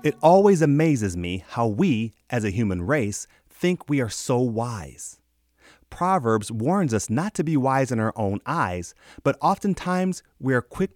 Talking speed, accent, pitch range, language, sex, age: 170 wpm, American, 100-155 Hz, English, male, 30-49